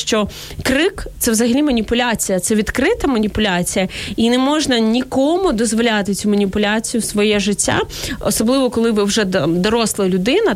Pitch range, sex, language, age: 205-250 Hz, female, Ukrainian, 20-39